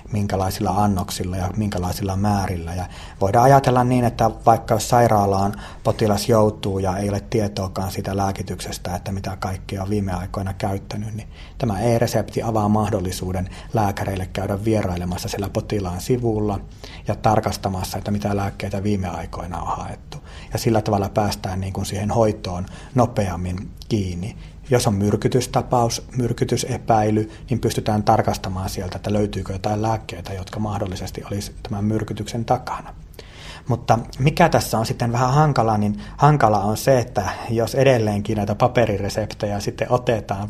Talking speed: 135 wpm